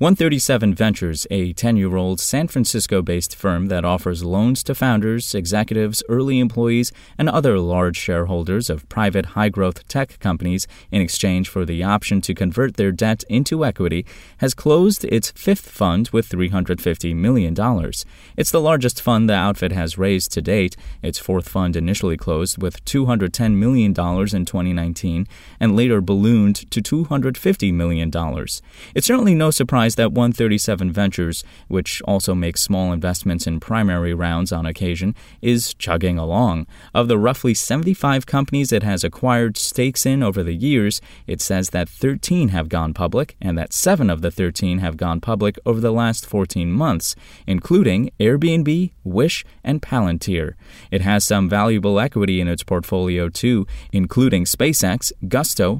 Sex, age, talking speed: male, 20-39, 150 wpm